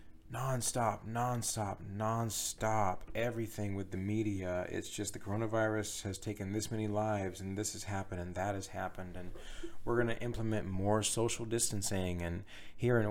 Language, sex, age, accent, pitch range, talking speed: English, male, 30-49, American, 95-110 Hz, 155 wpm